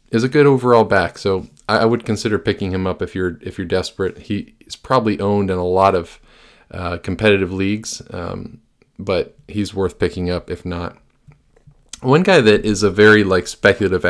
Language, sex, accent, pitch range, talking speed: English, male, American, 90-105 Hz, 185 wpm